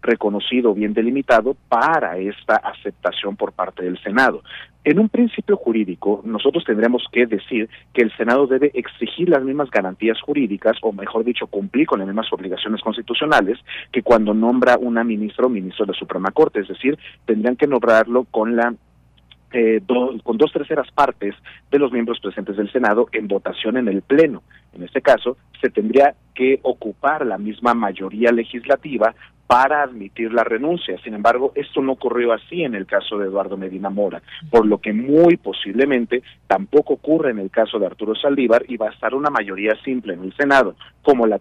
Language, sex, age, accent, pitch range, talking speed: Spanish, male, 40-59, Mexican, 105-130 Hz, 180 wpm